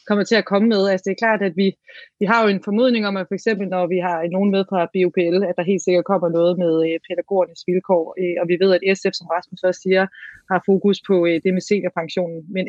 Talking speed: 245 wpm